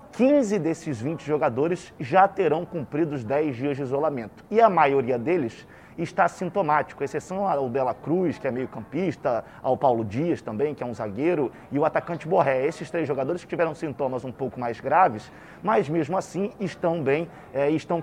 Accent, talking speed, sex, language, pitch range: Brazilian, 185 wpm, male, Portuguese, 145-195 Hz